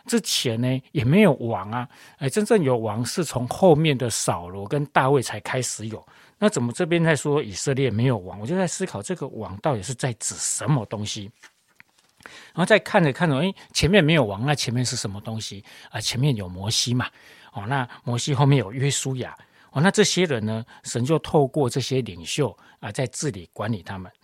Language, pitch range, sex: Chinese, 115-160 Hz, male